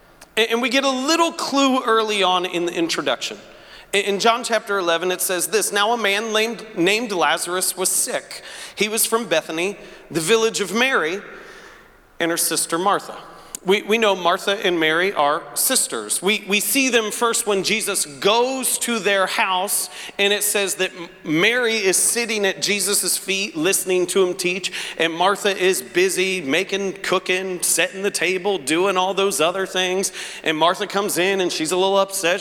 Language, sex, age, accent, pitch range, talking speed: English, male, 40-59, American, 180-220 Hz, 170 wpm